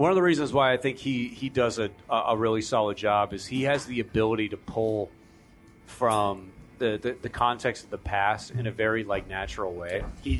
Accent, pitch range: American, 105-135 Hz